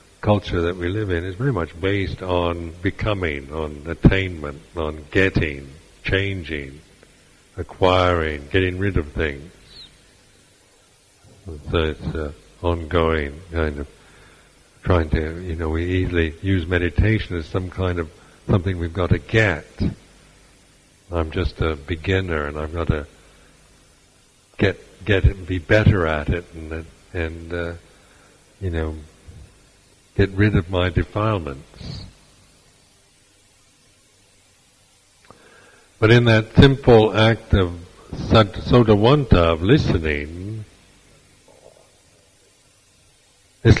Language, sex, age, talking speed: English, male, 60-79, 110 wpm